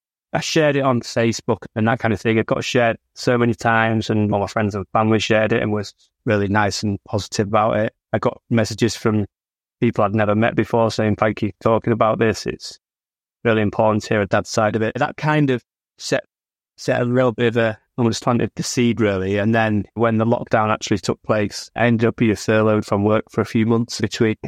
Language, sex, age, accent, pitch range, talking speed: English, male, 20-39, British, 105-115 Hz, 225 wpm